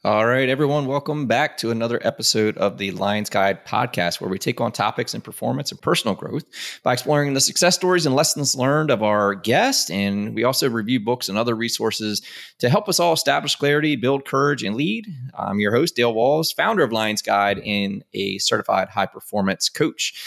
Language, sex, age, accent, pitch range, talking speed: English, male, 20-39, American, 110-145 Hz, 195 wpm